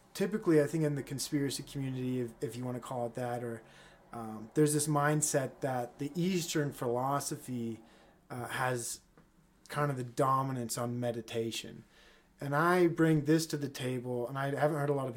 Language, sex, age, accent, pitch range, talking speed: English, male, 20-39, American, 125-155 Hz, 180 wpm